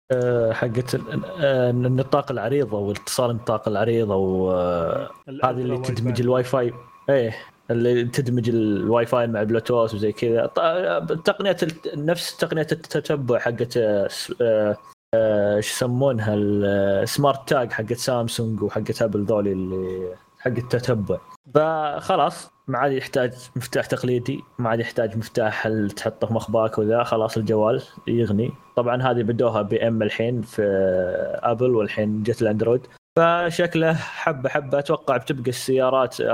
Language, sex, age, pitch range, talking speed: Arabic, male, 20-39, 110-130 Hz, 115 wpm